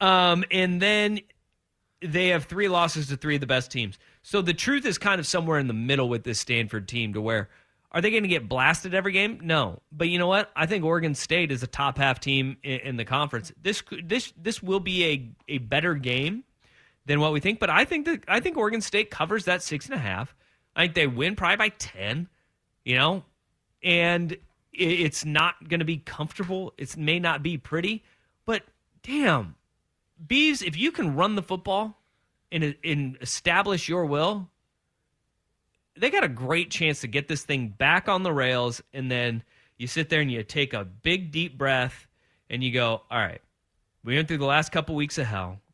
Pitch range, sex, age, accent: 125-175 Hz, male, 30-49, American